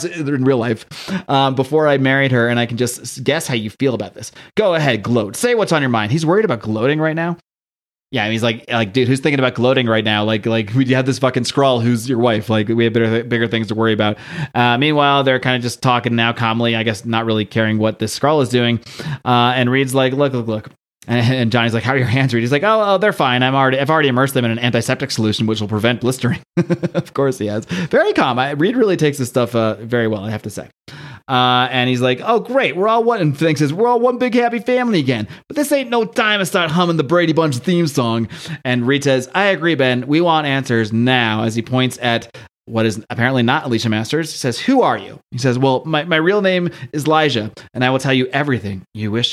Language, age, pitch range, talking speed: English, 30-49, 115-145 Hz, 255 wpm